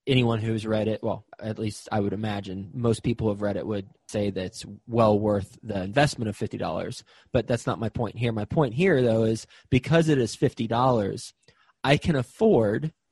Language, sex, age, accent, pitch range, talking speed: English, male, 20-39, American, 110-130 Hz, 195 wpm